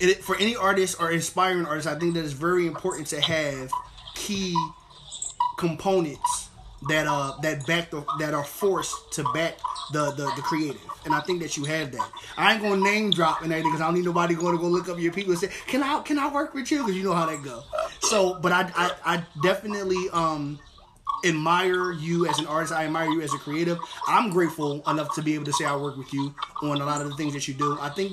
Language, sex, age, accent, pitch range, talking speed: English, male, 20-39, American, 155-190 Hz, 245 wpm